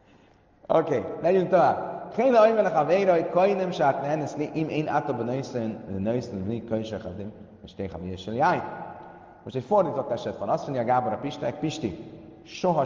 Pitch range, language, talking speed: 110-155 Hz, Hungarian, 155 wpm